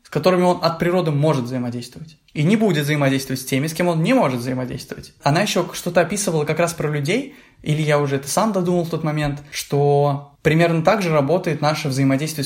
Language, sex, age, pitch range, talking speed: Russian, male, 20-39, 135-170 Hz, 205 wpm